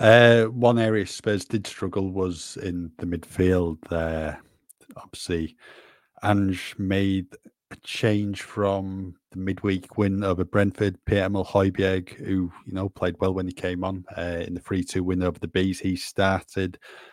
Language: English